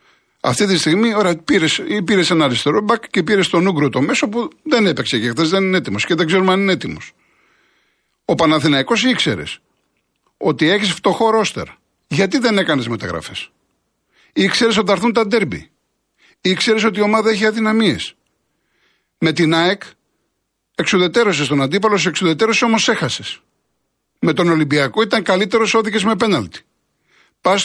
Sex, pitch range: male, 165-220 Hz